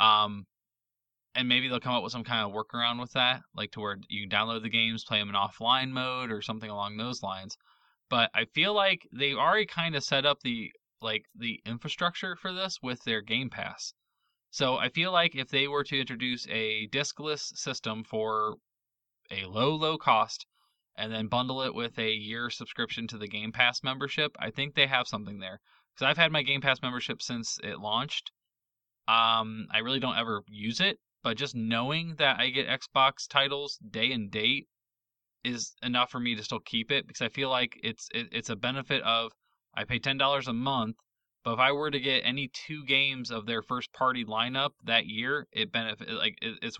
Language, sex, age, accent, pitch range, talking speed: English, male, 20-39, American, 110-135 Hz, 205 wpm